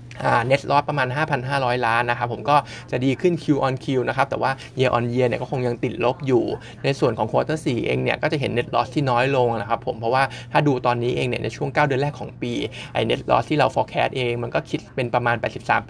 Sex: male